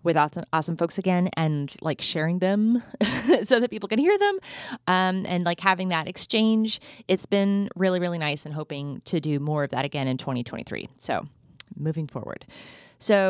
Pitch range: 155-215 Hz